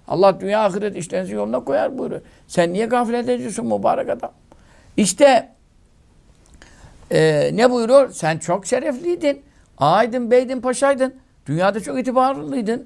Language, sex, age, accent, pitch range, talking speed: Turkish, male, 60-79, native, 160-240 Hz, 115 wpm